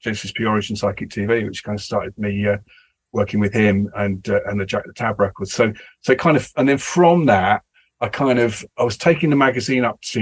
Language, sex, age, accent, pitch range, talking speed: English, male, 40-59, British, 100-115 Hz, 235 wpm